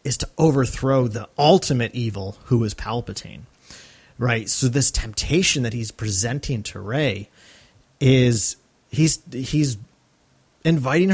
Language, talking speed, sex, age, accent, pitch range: English, 120 wpm, male, 30-49, American, 115-150 Hz